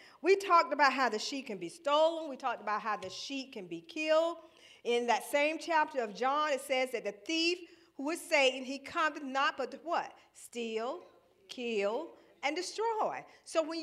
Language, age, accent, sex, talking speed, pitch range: English, 40-59, American, female, 185 wpm, 210-330 Hz